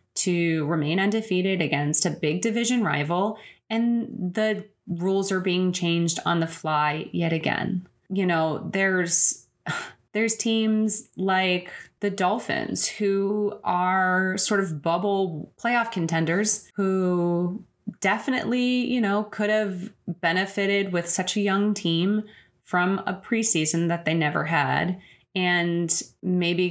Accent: American